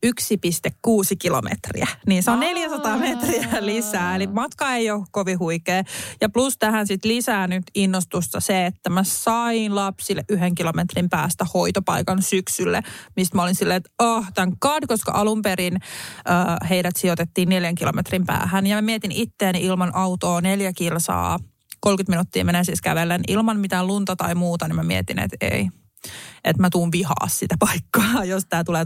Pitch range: 180-225 Hz